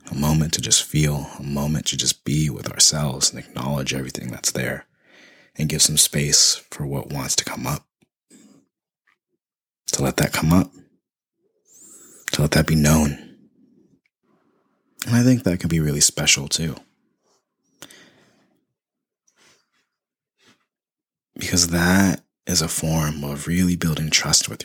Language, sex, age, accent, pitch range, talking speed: English, male, 30-49, American, 70-80 Hz, 135 wpm